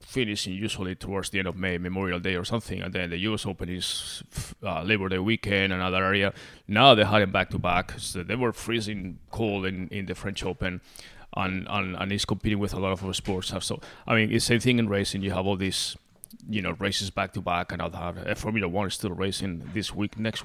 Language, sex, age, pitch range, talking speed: English, male, 30-49, 90-105 Hz, 225 wpm